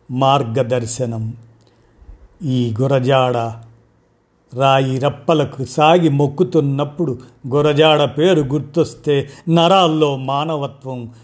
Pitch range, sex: 130-165 Hz, male